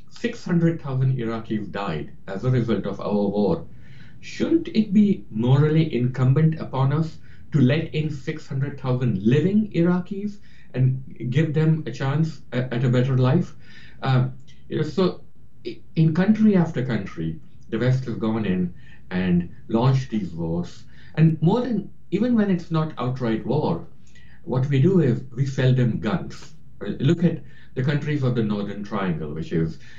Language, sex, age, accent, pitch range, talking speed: English, male, 60-79, Indian, 115-160 Hz, 145 wpm